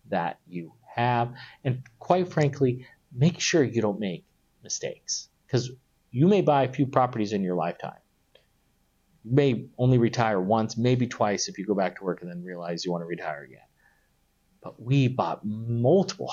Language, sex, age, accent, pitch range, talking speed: English, male, 40-59, American, 110-155 Hz, 175 wpm